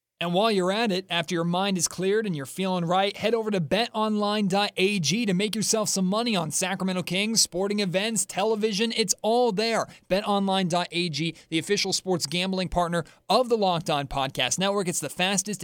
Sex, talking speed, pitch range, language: male, 180 wpm, 160-205 Hz, English